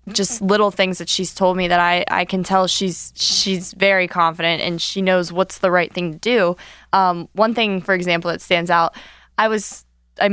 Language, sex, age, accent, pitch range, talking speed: English, female, 20-39, American, 170-200 Hz, 210 wpm